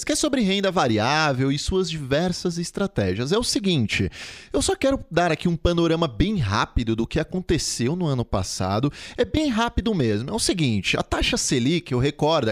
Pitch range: 125-200 Hz